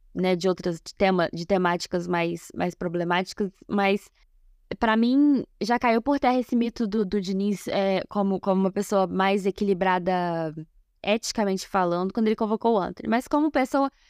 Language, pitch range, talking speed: Portuguese, 190-240 Hz, 165 wpm